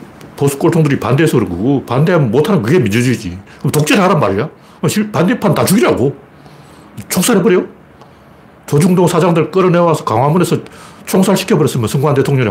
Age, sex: 40-59, male